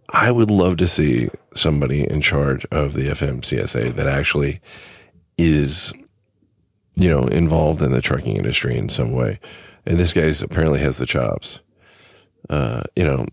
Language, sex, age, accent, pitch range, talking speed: English, male, 40-59, American, 70-90 Hz, 155 wpm